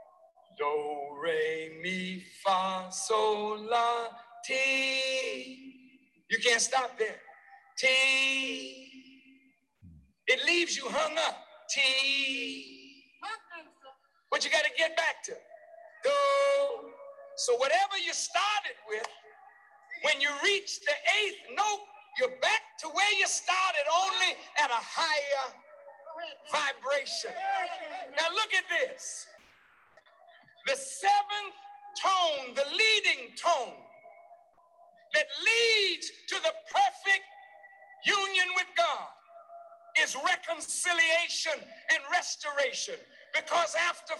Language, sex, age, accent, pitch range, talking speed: French, male, 60-79, American, 275-375 Hz, 100 wpm